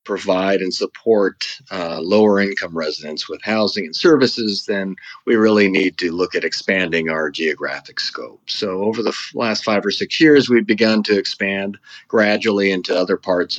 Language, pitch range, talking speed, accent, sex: English, 90-110 Hz, 170 wpm, American, male